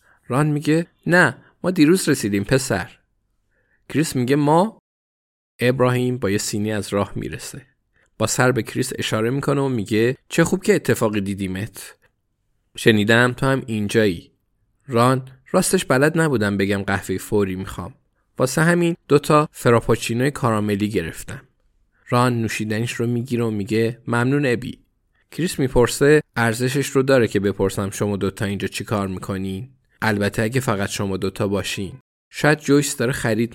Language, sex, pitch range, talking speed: Persian, male, 105-140 Hz, 140 wpm